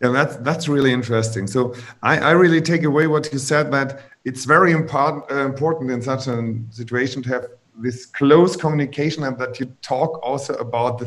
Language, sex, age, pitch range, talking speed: German, male, 30-49, 125-160 Hz, 185 wpm